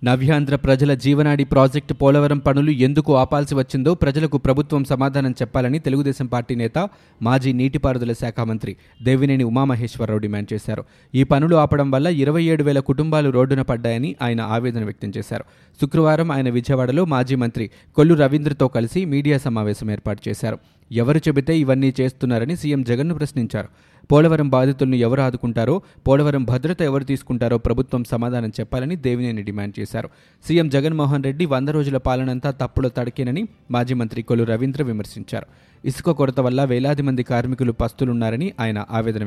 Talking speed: 140 wpm